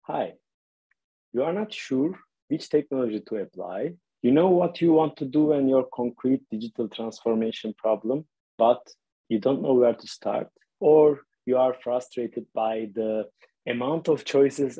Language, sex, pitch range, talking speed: English, male, 110-145 Hz, 155 wpm